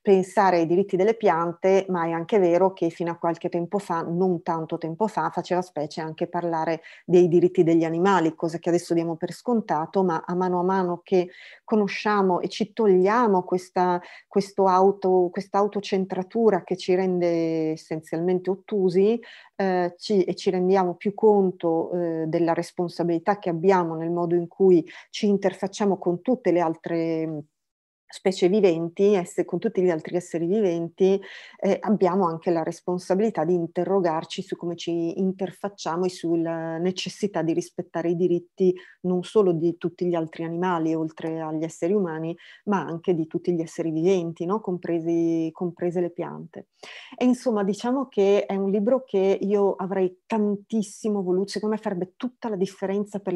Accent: native